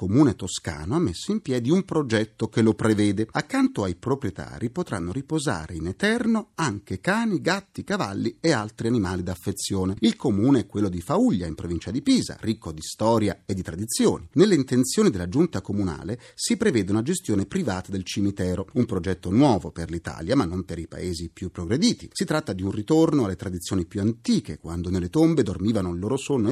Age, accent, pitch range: 40-59, native, 95-150 Hz